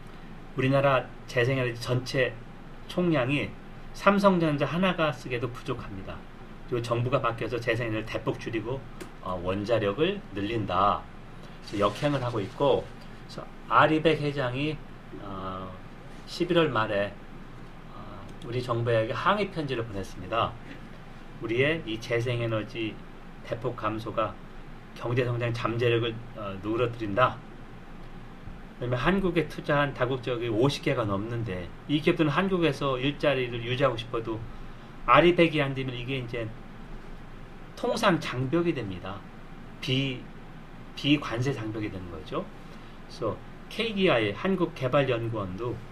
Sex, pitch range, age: male, 110-145 Hz, 40-59